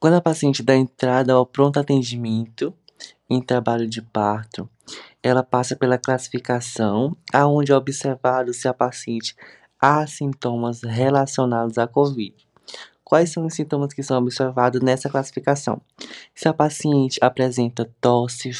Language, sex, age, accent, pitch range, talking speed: Portuguese, male, 20-39, Brazilian, 120-145 Hz, 130 wpm